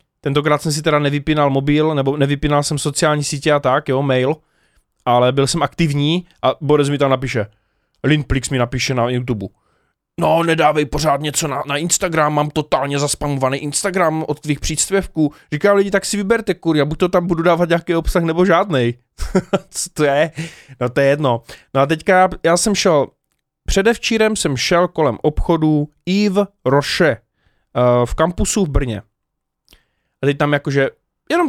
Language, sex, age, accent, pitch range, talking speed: Czech, male, 20-39, native, 140-185 Hz, 170 wpm